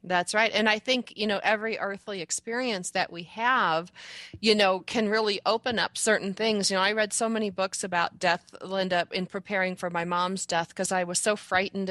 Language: English